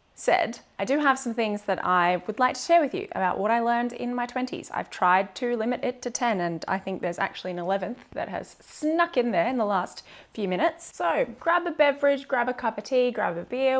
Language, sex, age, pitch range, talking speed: English, female, 20-39, 195-265 Hz, 250 wpm